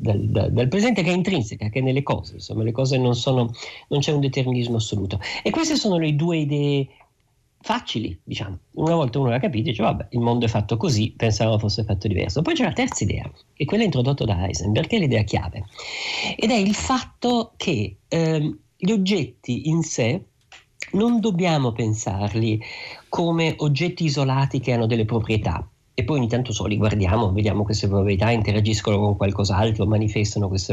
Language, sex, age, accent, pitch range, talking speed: Italian, male, 50-69, native, 110-170 Hz, 185 wpm